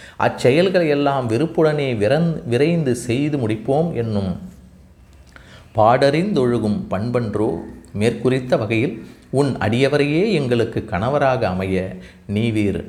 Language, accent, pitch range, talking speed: Tamil, native, 105-140 Hz, 80 wpm